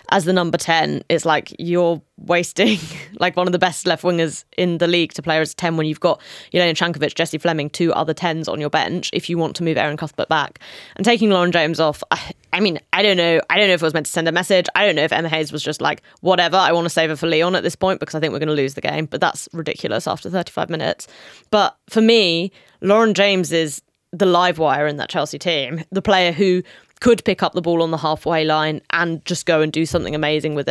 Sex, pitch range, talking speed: female, 160-195 Hz, 265 wpm